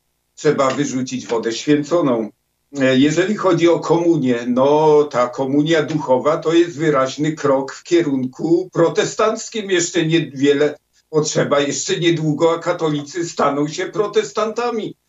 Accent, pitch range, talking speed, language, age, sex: native, 130-170 Hz, 120 wpm, Polish, 50-69, male